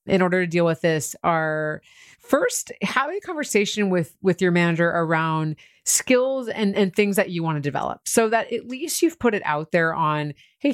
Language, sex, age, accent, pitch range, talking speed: English, female, 30-49, American, 165-215 Hz, 200 wpm